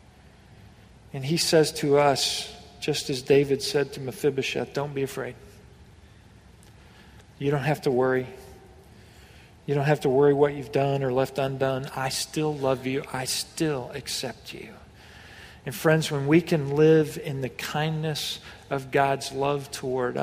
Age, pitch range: 40-59, 130-145 Hz